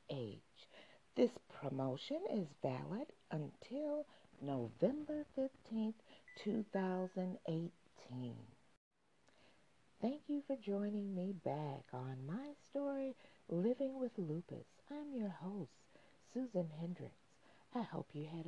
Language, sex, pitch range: English, female, 160-220 Hz